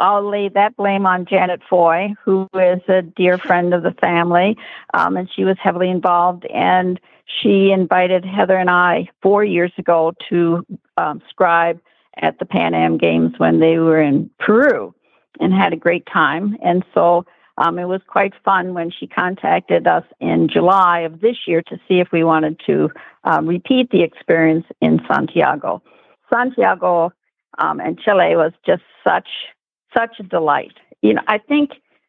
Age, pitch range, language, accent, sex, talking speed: 50-69, 170-200 Hz, English, American, female, 170 wpm